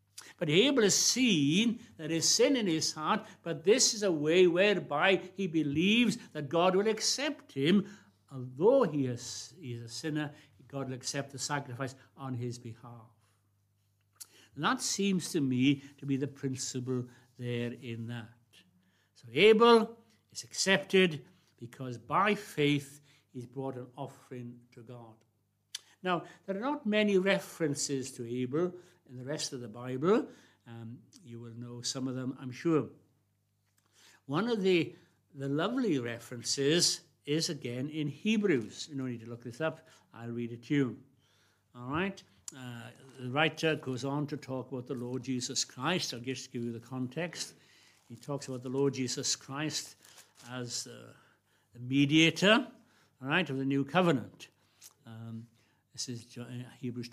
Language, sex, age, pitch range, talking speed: English, male, 60-79, 120-165 Hz, 155 wpm